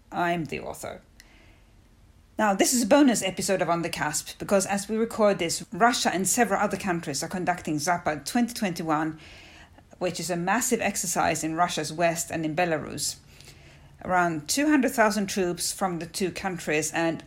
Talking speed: 160 wpm